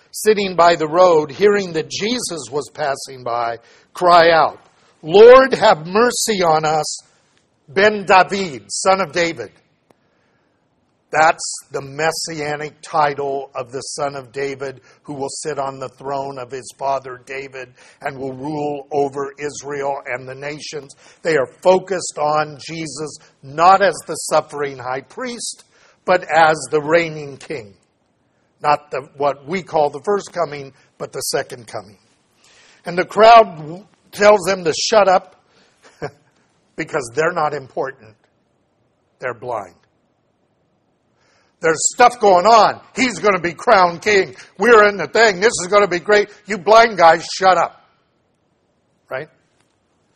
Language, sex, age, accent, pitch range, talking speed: English, male, 50-69, American, 140-195 Hz, 140 wpm